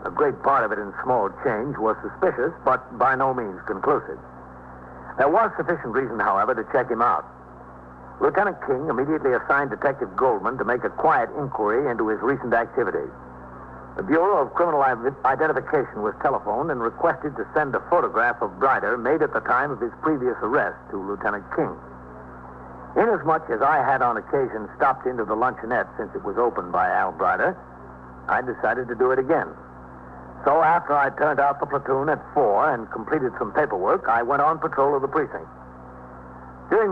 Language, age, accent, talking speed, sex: English, 60-79, American, 175 wpm, male